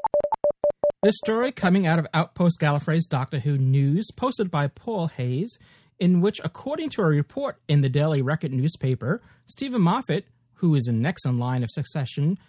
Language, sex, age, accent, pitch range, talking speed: English, male, 30-49, American, 140-195 Hz, 170 wpm